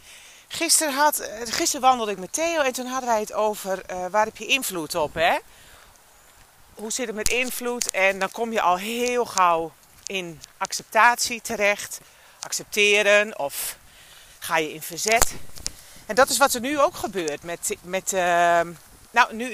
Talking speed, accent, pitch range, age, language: 165 wpm, Dutch, 185-260 Hz, 40-59, Dutch